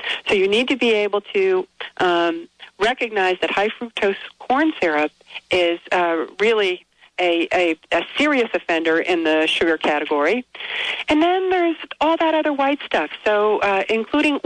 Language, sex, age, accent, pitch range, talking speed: English, female, 50-69, American, 185-275 Hz, 150 wpm